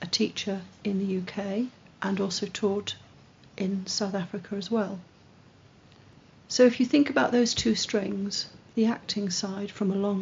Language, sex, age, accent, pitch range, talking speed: English, female, 40-59, British, 195-225 Hz, 160 wpm